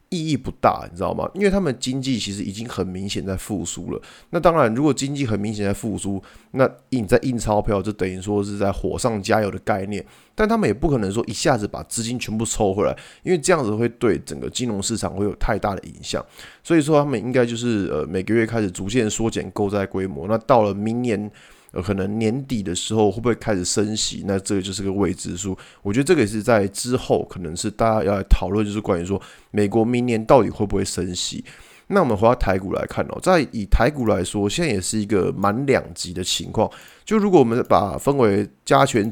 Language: Chinese